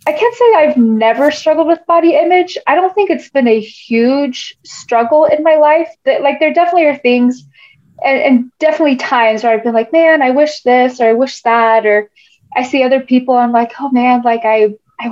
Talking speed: 220 wpm